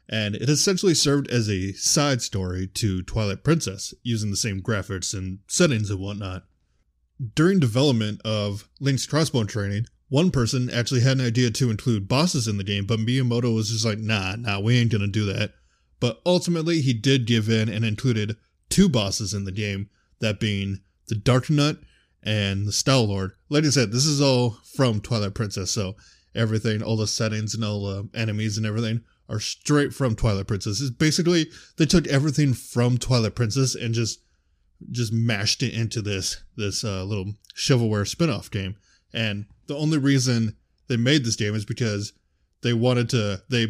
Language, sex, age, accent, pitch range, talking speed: English, male, 20-39, American, 100-130 Hz, 175 wpm